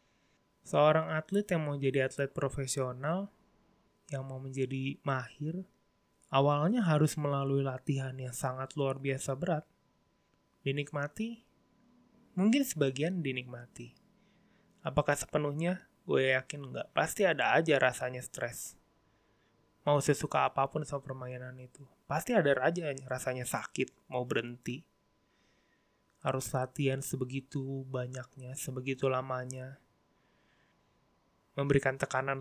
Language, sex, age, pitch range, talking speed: Indonesian, male, 20-39, 130-160 Hz, 100 wpm